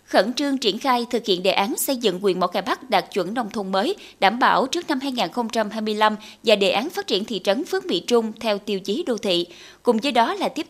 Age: 20-39